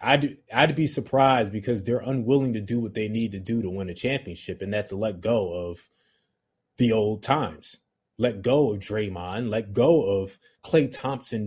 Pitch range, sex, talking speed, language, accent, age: 105-140 Hz, male, 185 wpm, English, American, 20-39